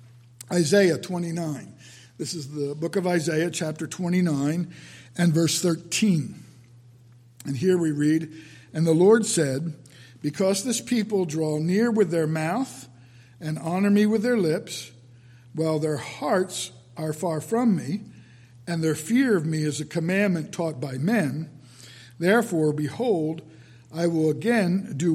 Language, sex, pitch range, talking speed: English, male, 120-180 Hz, 140 wpm